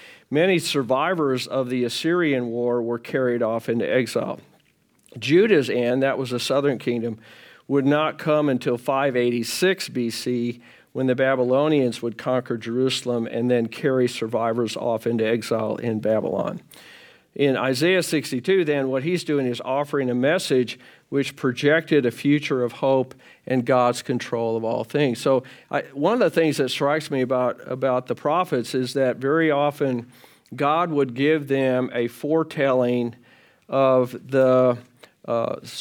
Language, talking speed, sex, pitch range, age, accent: English, 145 wpm, male, 125-150 Hz, 50-69, American